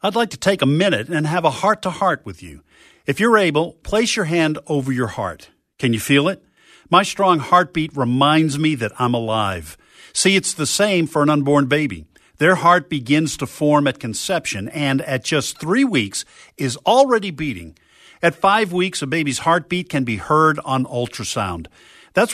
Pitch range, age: 130-185 Hz, 50-69